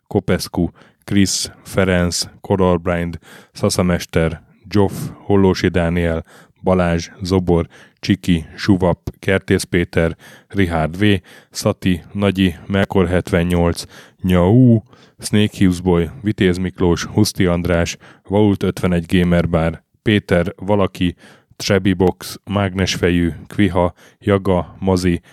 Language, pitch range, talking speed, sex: Hungarian, 90-100 Hz, 80 wpm, male